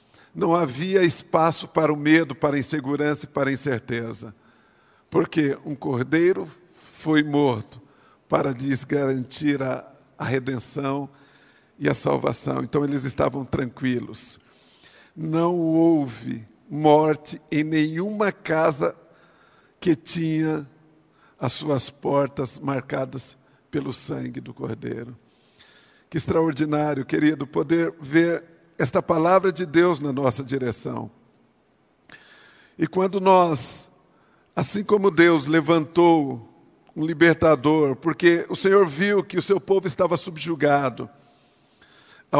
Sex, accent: male, Brazilian